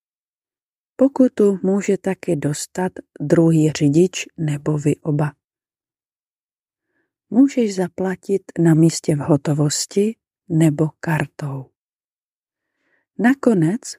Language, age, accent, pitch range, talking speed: English, 40-59, Czech, 155-205 Hz, 75 wpm